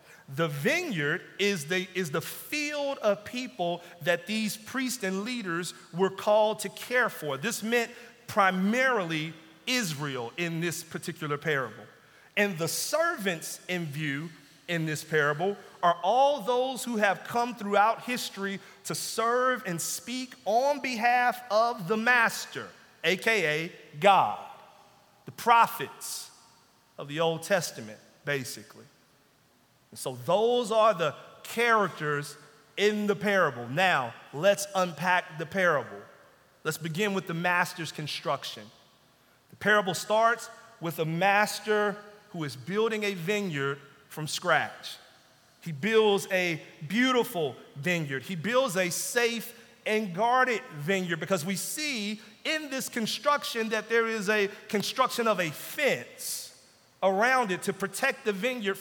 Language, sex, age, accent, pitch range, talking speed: English, male, 40-59, American, 165-230 Hz, 125 wpm